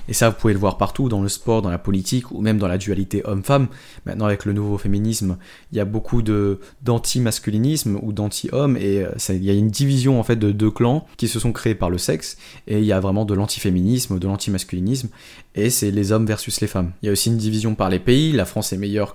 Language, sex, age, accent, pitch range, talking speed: French, male, 20-39, French, 100-120 Hz, 250 wpm